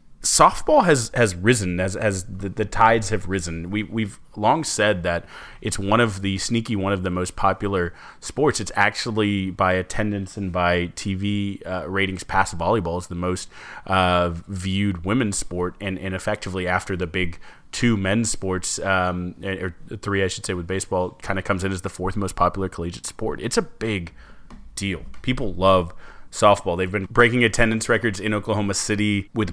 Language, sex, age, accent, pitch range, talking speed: English, male, 30-49, American, 95-110 Hz, 180 wpm